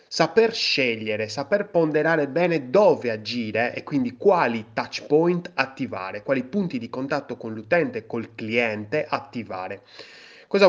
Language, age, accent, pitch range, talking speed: Italian, 30-49, native, 115-175 Hz, 130 wpm